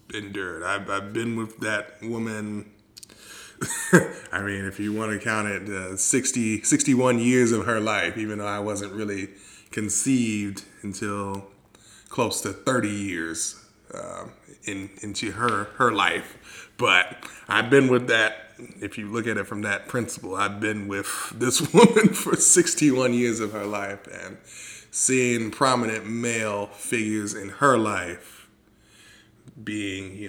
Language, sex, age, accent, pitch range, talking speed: English, male, 20-39, American, 100-110 Hz, 145 wpm